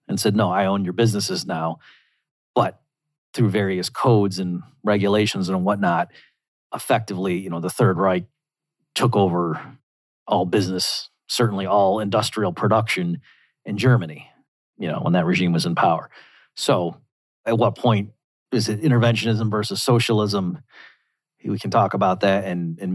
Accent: American